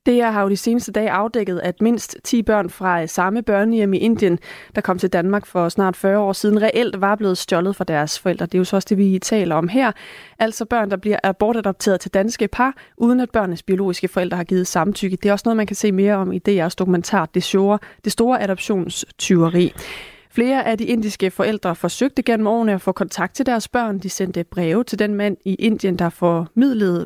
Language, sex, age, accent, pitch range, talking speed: Danish, female, 30-49, native, 185-220 Hz, 215 wpm